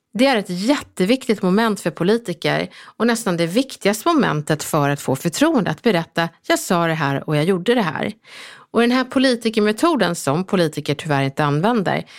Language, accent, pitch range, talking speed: English, Swedish, 170-240 Hz, 175 wpm